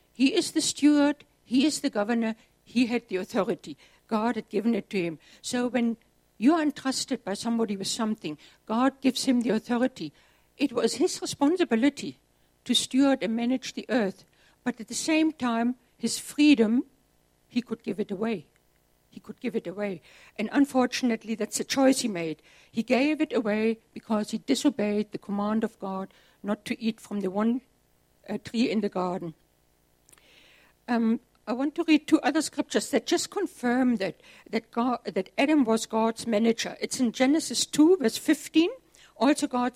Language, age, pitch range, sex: English, 60-79, 210-265 Hz, female